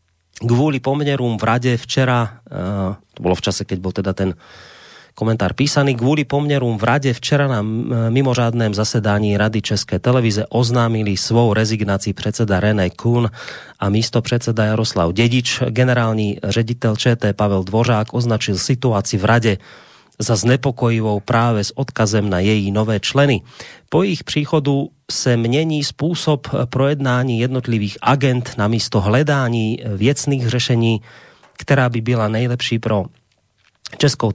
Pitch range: 105-125 Hz